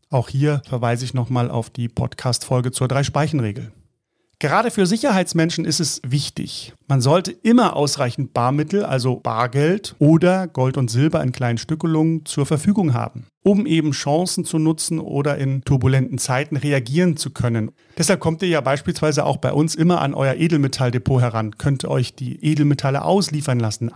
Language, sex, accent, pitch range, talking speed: German, male, German, 130-165 Hz, 160 wpm